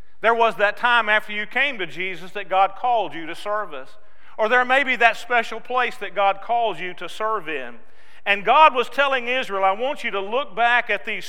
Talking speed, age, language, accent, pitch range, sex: 225 wpm, 50-69, English, American, 185-230 Hz, male